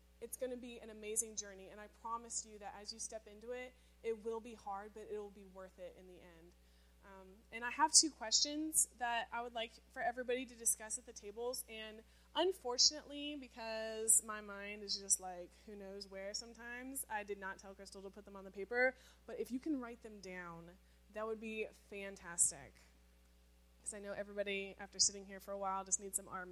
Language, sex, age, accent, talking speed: English, female, 20-39, American, 215 wpm